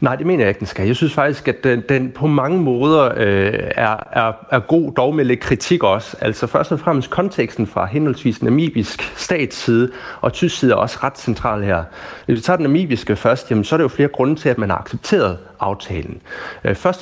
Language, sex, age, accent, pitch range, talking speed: Danish, male, 30-49, native, 100-135 Hz, 205 wpm